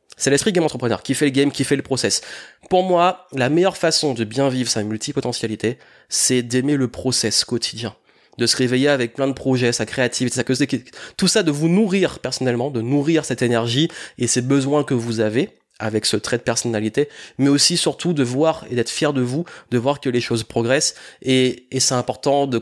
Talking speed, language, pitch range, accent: 205 wpm, French, 120-145 Hz, French